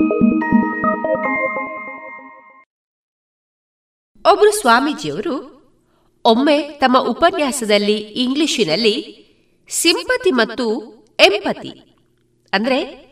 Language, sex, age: Kannada, female, 30-49